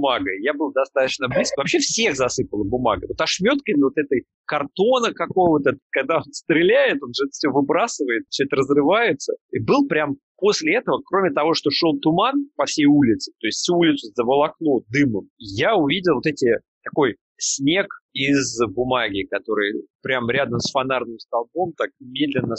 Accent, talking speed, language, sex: native, 155 wpm, Russian, male